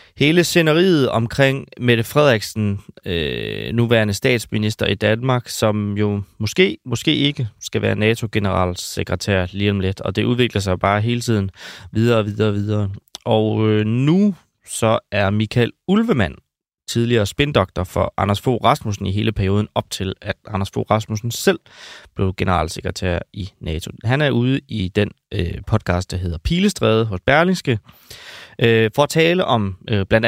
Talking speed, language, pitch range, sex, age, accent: 160 wpm, Danish, 100-120 Hz, male, 20-39, native